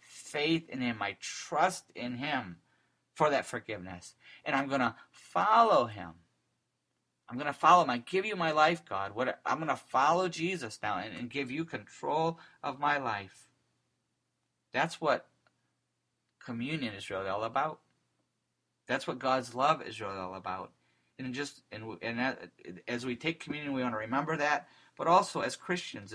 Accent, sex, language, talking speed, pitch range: American, male, English, 165 wpm, 105-140 Hz